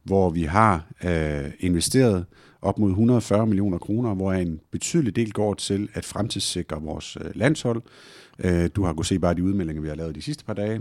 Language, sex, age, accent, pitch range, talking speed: Danish, male, 50-69, native, 85-110 Hz, 185 wpm